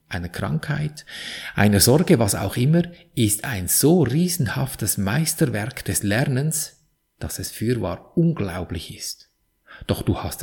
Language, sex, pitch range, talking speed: German, male, 100-150 Hz, 125 wpm